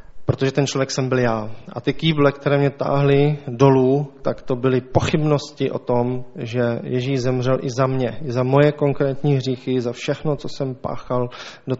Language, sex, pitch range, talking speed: Czech, male, 120-135 Hz, 185 wpm